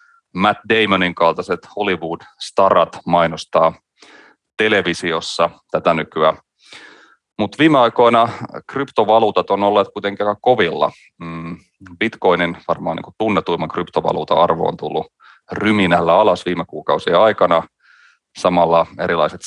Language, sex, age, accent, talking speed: Finnish, male, 30-49, native, 100 wpm